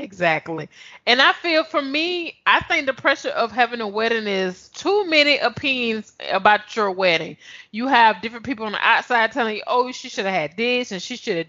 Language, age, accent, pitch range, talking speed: English, 20-39, American, 210-265 Hz, 210 wpm